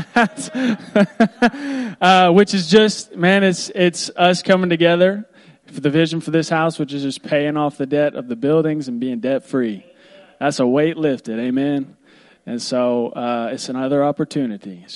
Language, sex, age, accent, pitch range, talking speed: English, male, 20-39, American, 125-165 Hz, 170 wpm